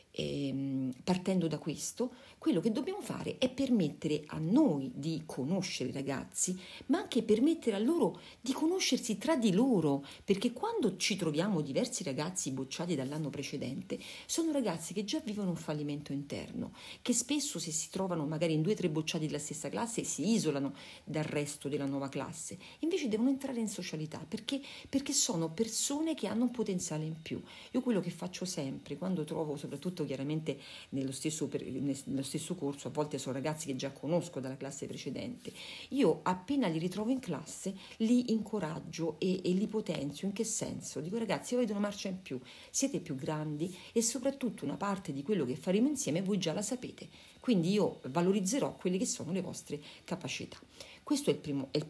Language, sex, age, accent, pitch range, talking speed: Italian, female, 40-59, native, 150-230 Hz, 175 wpm